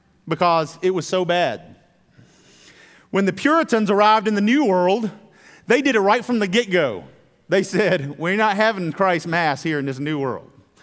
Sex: male